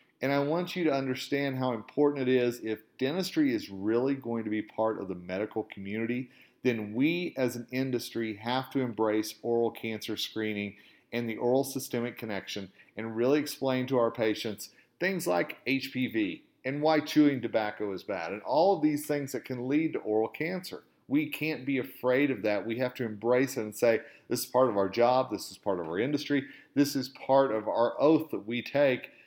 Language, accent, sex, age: English, American, male, 40-59